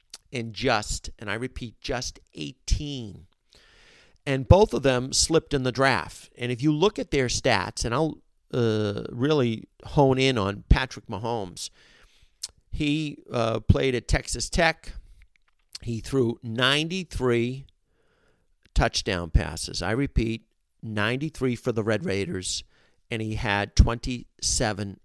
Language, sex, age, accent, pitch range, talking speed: English, male, 50-69, American, 110-140 Hz, 125 wpm